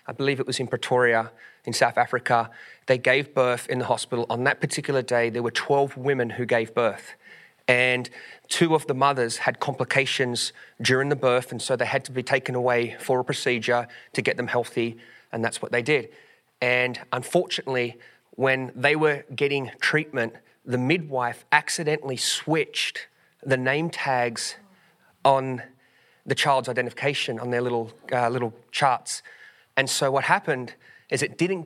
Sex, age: male, 30-49